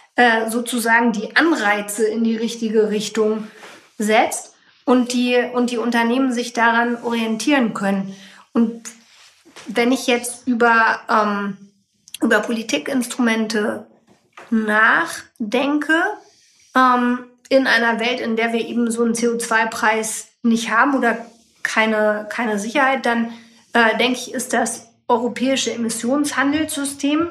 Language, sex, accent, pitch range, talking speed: German, female, German, 220-245 Hz, 110 wpm